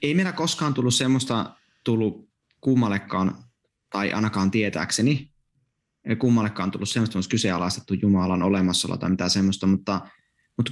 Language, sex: Finnish, male